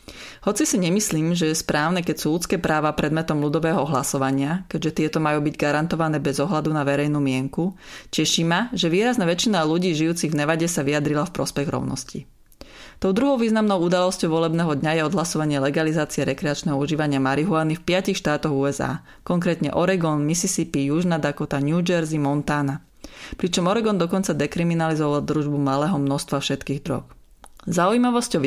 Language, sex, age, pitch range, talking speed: Slovak, female, 30-49, 145-180 Hz, 150 wpm